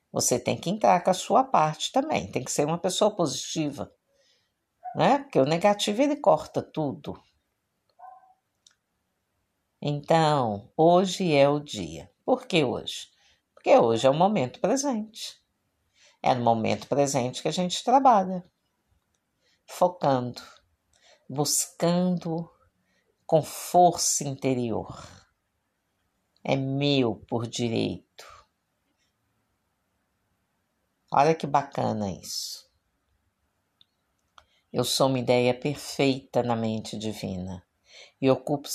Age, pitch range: 50-69, 105-155 Hz